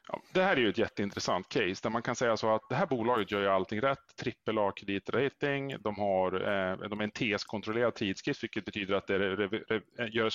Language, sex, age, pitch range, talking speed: Swedish, male, 30-49, 105-155 Hz, 205 wpm